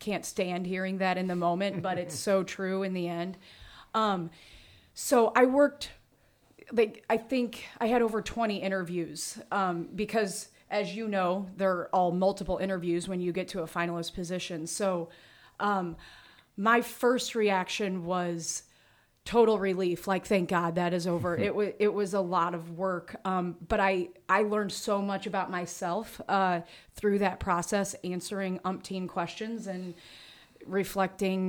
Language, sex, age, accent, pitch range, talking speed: English, female, 30-49, American, 180-210 Hz, 155 wpm